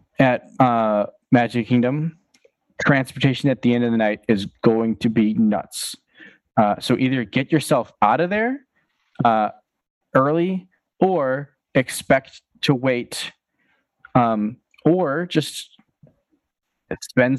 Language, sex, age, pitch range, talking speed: English, male, 20-39, 115-145 Hz, 115 wpm